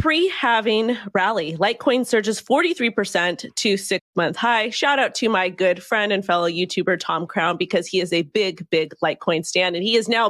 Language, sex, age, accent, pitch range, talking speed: English, female, 30-49, American, 180-230 Hz, 205 wpm